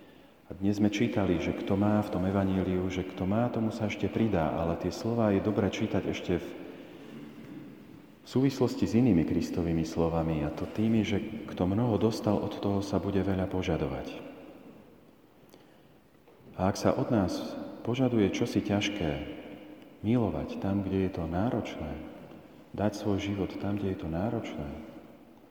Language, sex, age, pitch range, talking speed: Slovak, male, 40-59, 90-110 Hz, 155 wpm